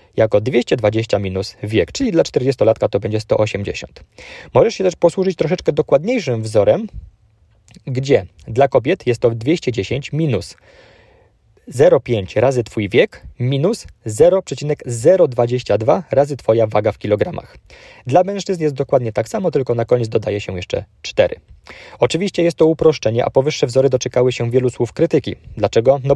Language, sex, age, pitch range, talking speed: Polish, male, 20-39, 110-150 Hz, 140 wpm